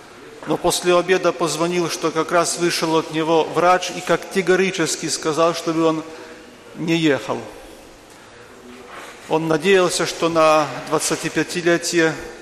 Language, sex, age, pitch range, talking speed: Polish, male, 40-59, 155-180 Hz, 115 wpm